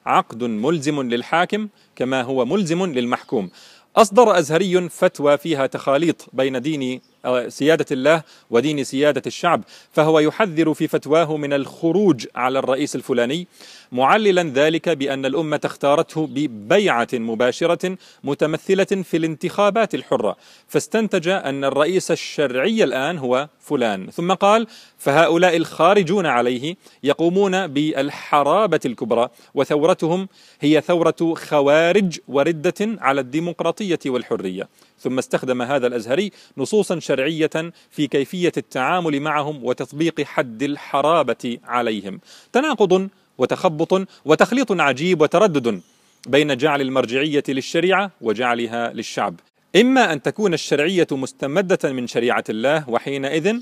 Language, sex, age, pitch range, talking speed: Arabic, male, 40-59, 140-185 Hz, 105 wpm